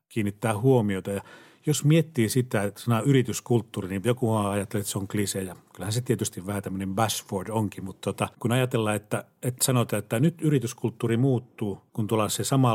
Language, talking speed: Finnish, 180 wpm